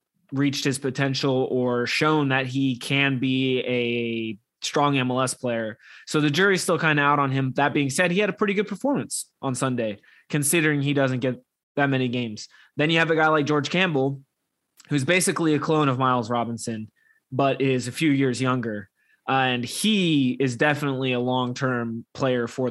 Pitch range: 125-155 Hz